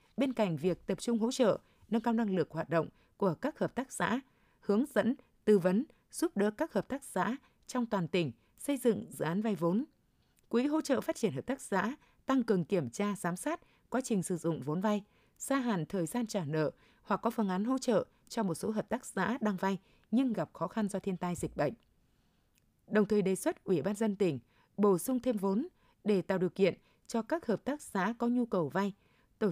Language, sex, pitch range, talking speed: Vietnamese, female, 185-245 Hz, 230 wpm